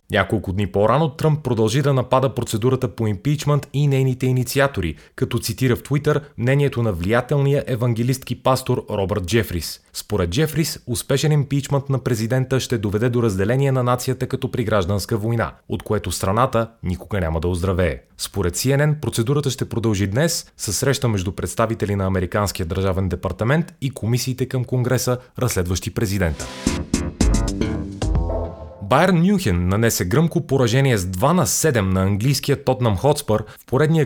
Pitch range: 100-130 Hz